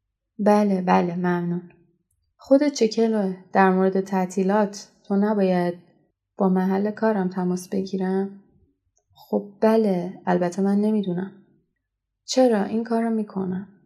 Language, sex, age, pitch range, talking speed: Persian, female, 20-39, 185-215 Hz, 110 wpm